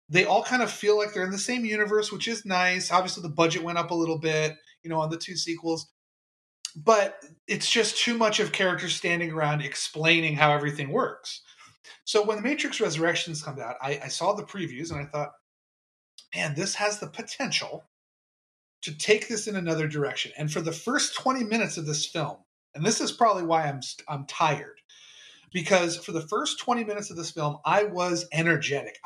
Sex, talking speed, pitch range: male, 200 wpm, 155-205 Hz